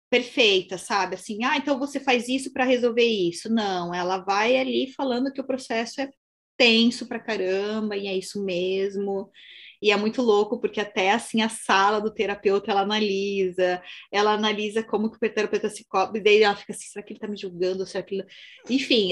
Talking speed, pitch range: 195 wpm, 200-240 Hz